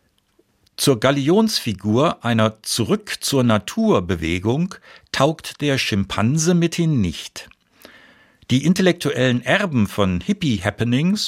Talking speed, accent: 75 wpm, German